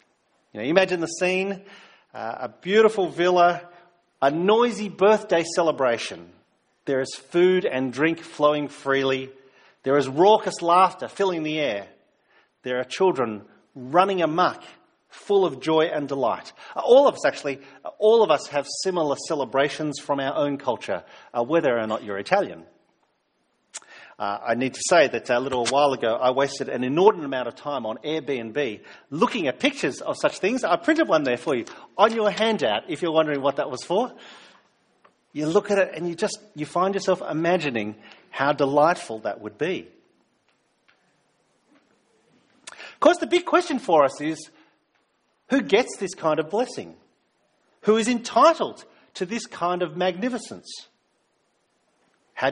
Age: 40-59